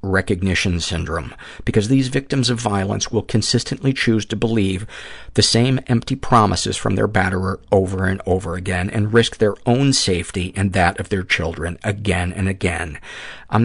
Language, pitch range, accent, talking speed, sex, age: English, 90-110 Hz, American, 165 wpm, male, 50-69